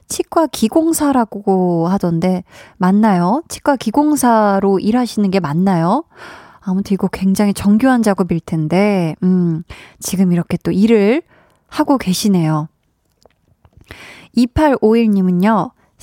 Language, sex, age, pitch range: Korean, female, 20-39, 190-265 Hz